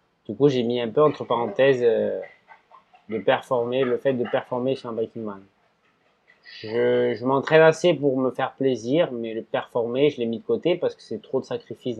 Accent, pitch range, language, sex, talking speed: French, 120-150 Hz, French, male, 205 wpm